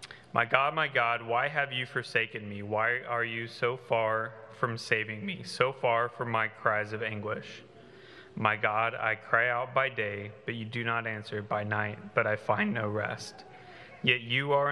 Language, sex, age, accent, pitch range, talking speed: English, male, 30-49, American, 110-125 Hz, 190 wpm